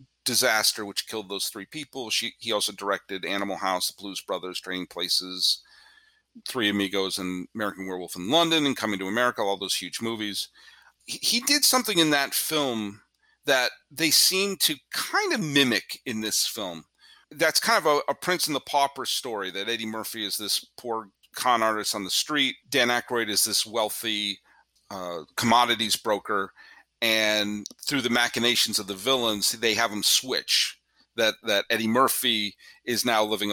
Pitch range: 100-130 Hz